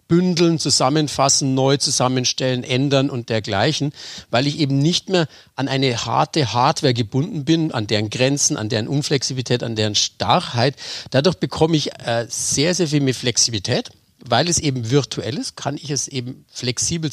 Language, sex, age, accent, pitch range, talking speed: German, male, 40-59, German, 120-155 Hz, 160 wpm